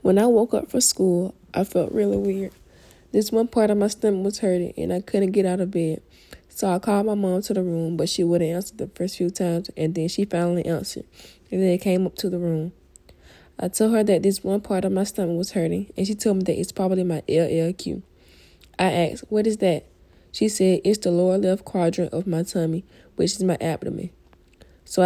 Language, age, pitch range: English, 20-39, 165-195 Hz